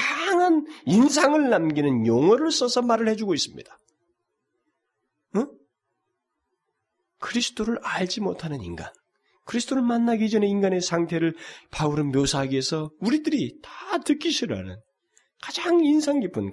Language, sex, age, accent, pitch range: Korean, male, 30-49, native, 195-300 Hz